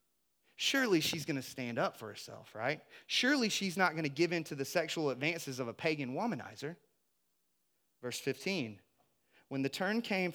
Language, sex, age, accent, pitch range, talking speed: English, male, 30-49, American, 130-170 Hz, 175 wpm